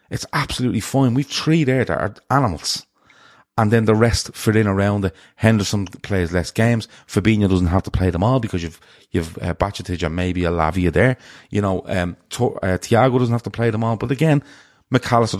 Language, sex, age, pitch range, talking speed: English, male, 30-49, 95-120 Hz, 205 wpm